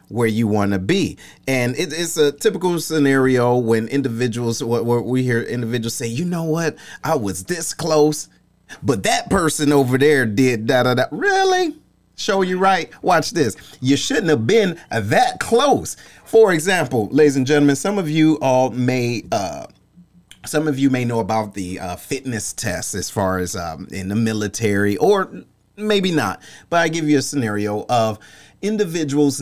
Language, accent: English, American